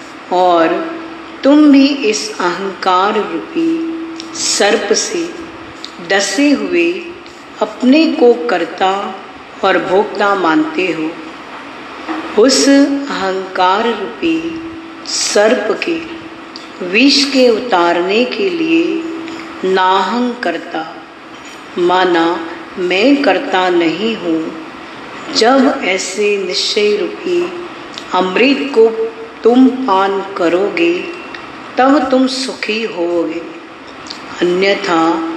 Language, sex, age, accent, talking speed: Hindi, female, 40-59, native, 80 wpm